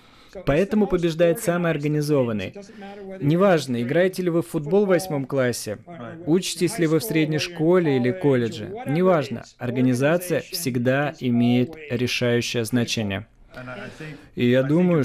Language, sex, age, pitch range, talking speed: Russian, male, 20-39, 115-135 Hz, 120 wpm